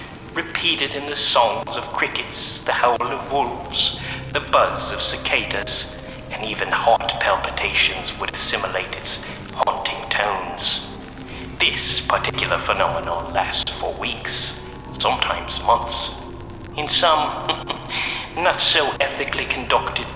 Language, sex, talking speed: English, male, 100 wpm